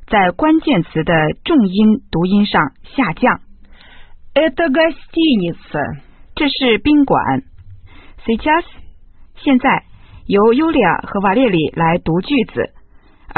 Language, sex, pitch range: Chinese, female, 150-240 Hz